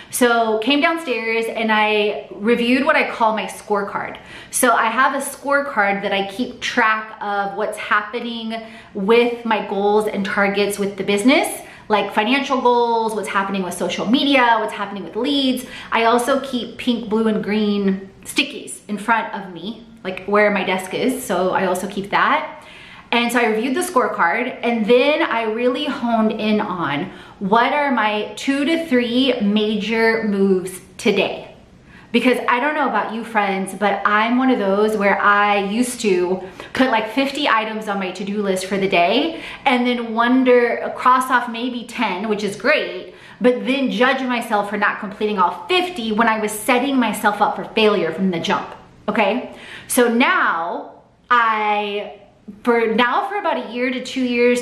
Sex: female